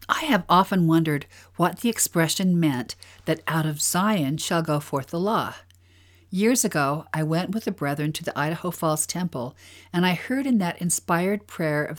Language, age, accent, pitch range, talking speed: English, 50-69, American, 140-175 Hz, 185 wpm